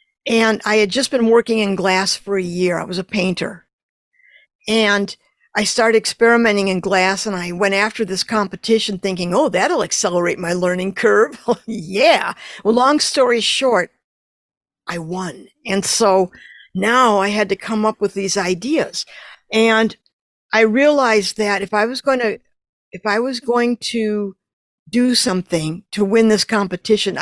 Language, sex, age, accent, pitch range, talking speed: English, female, 50-69, American, 190-235 Hz, 160 wpm